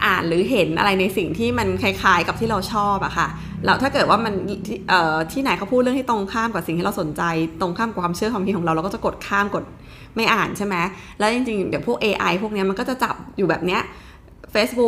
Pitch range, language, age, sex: 180-225 Hz, Thai, 20-39, female